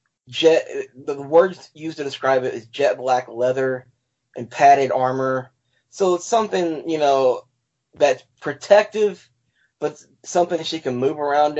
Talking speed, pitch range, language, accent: 145 wpm, 125-150 Hz, English, American